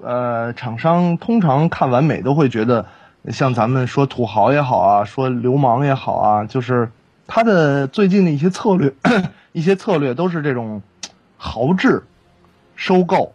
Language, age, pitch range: Chinese, 20-39, 115-170 Hz